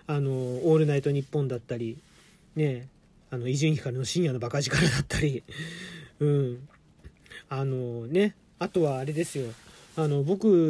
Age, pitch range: 40-59, 145-230 Hz